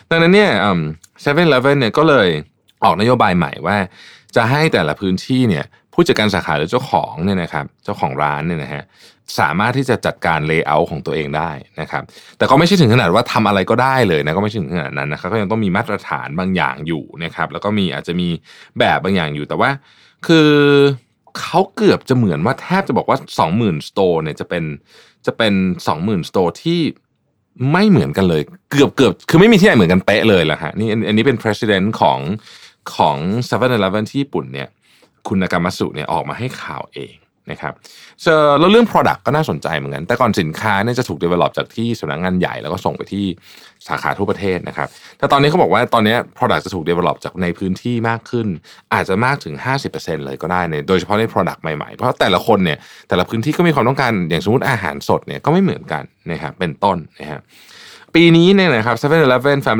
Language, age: Thai, 20-39